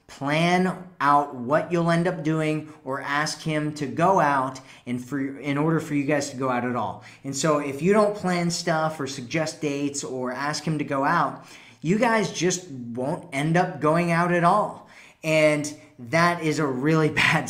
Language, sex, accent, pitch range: English, male, American, 135-170 Hz